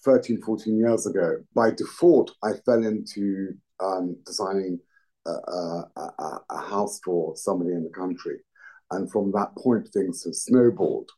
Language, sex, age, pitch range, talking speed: English, male, 50-69, 95-130 Hz, 150 wpm